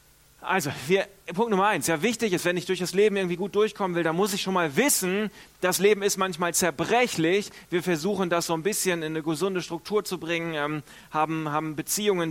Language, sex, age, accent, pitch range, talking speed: German, male, 40-59, German, 155-190 Hz, 215 wpm